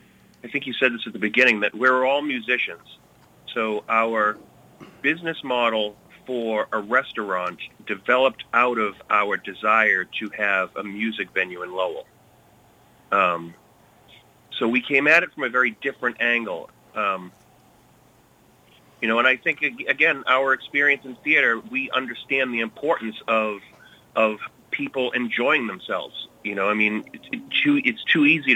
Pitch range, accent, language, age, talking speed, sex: 110-130 Hz, American, English, 40-59, 150 wpm, male